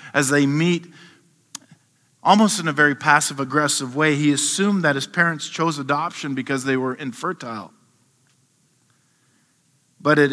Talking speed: 130 wpm